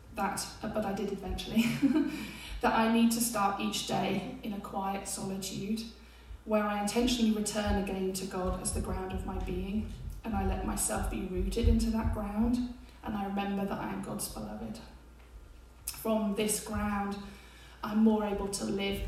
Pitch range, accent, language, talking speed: 190-225 Hz, British, English, 170 wpm